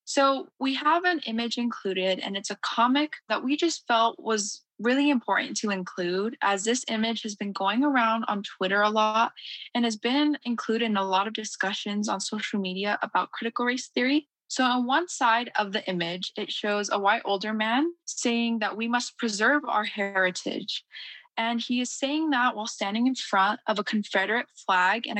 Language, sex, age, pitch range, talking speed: English, female, 10-29, 205-255 Hz, 190 wpm